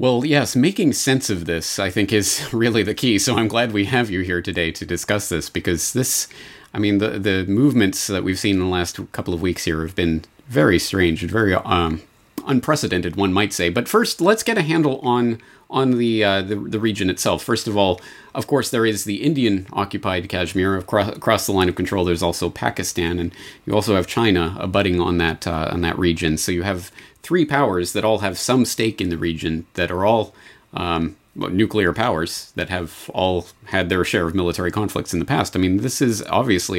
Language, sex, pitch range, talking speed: English, male, 90-115 Hz, 215 wpm